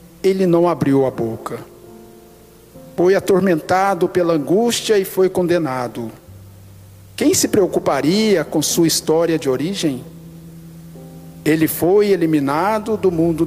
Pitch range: 130-195 Hz